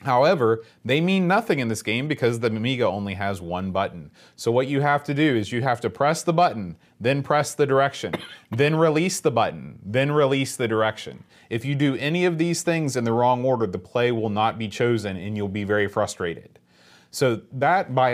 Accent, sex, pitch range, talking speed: American, male, 110-145 Hz, 210 wpm